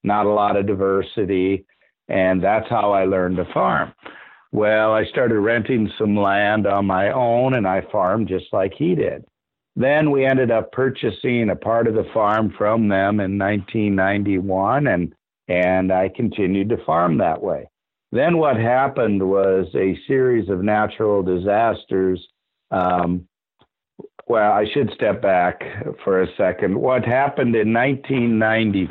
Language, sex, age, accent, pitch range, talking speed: English, male, 50-69, American, 95-110 Hz, 160 wpm